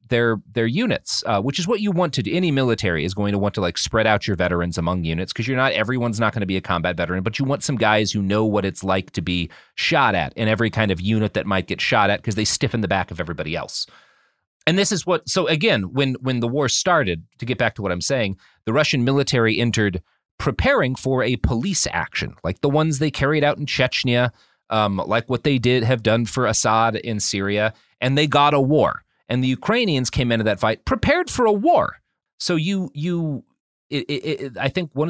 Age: 30-49